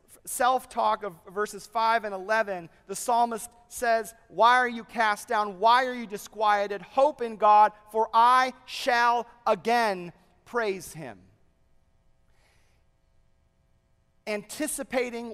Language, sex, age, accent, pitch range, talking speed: English, male, 40-59, American, 205-265 Hz, 110 wpm